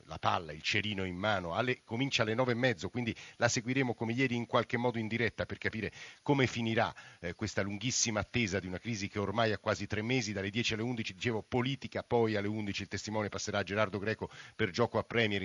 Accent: native